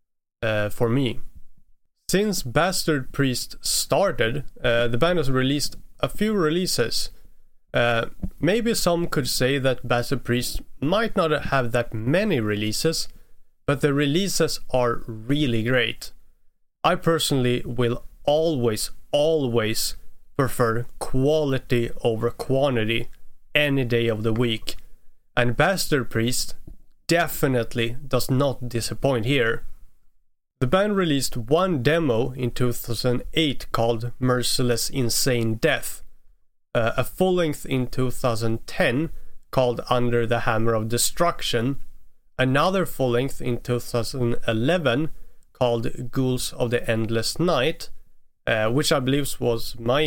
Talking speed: 115 wpm